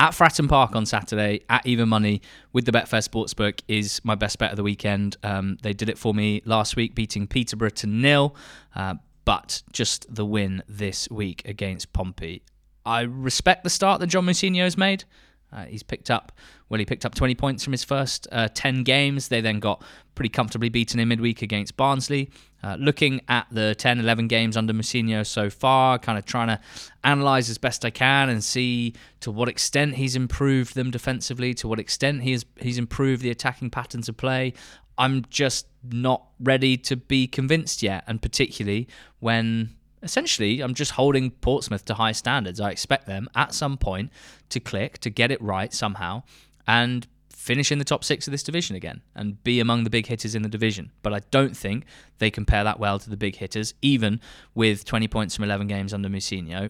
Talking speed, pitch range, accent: 195 wpm, 105-130 Hz, British